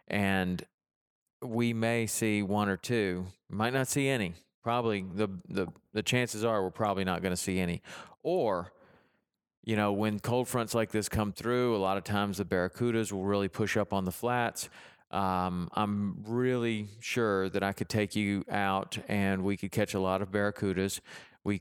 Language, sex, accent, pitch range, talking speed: English, male, American, 95-115 Hz, 185 wpm